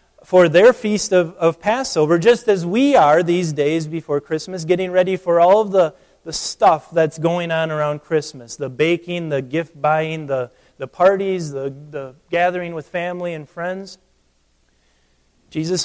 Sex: male